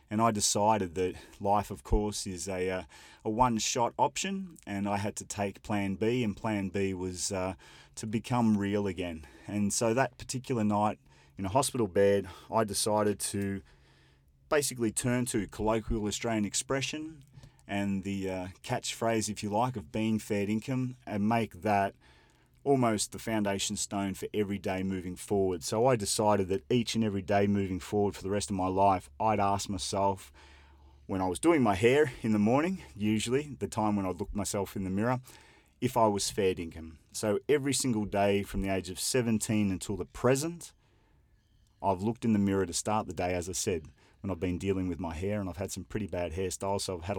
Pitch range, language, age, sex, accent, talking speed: 95-110 Hz, English, 30-49, male, Australian, 195 wpm